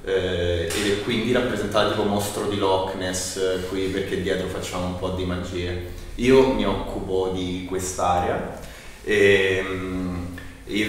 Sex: male